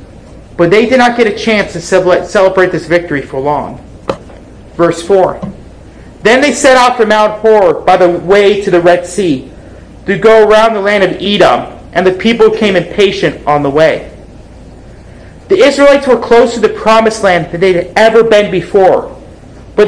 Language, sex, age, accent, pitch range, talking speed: English, male, 40-59, American, 185-230 Hz, 180 wpm